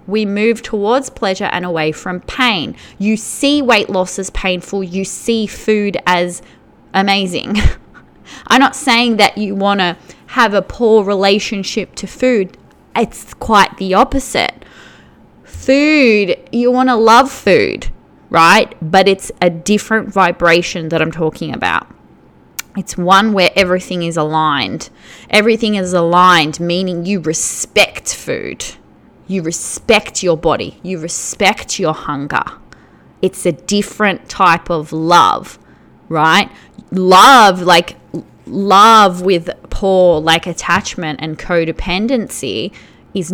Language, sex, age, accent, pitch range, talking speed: English, female, 20-39, Australian, 175-215 Hz, 125 wpm